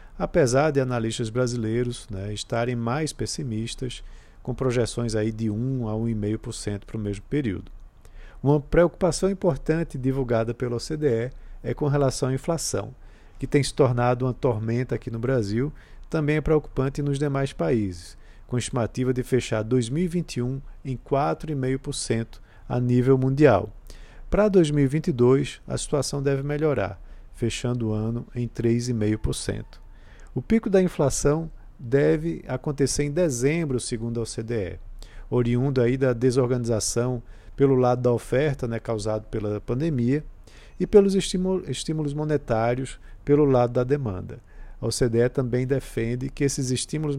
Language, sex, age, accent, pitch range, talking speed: Portuguese, male, 50-69, Brazilian, 115-145 Hz, 130 wpm